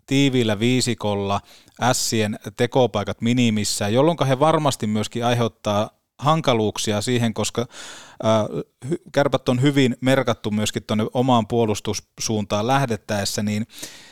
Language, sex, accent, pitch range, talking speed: Finnish, male, native, 105-130 Hz, 100 wpm